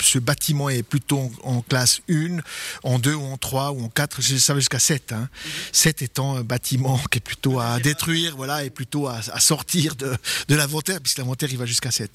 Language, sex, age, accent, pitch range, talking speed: French, male, 50-69, French, 130-165 Hz, 210 wpm